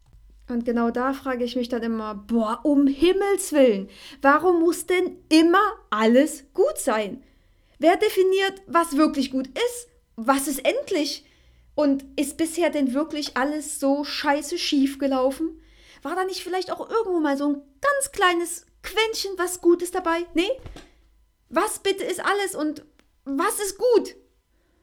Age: 30-49